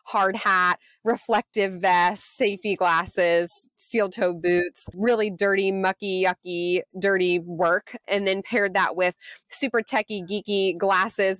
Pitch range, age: 175-210 Hz, 20-39